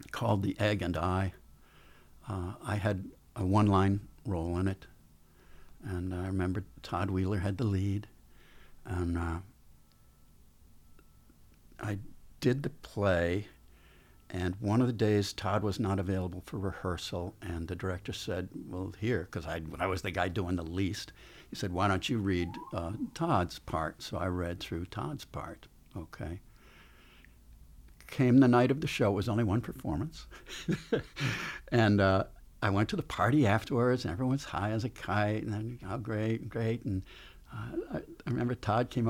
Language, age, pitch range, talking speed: English, 60-79, 90-120 Hz, 165 wpm